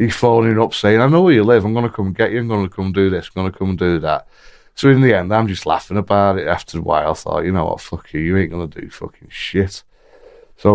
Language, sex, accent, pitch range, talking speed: English, male, British, 95-115 Hz, 285 wpm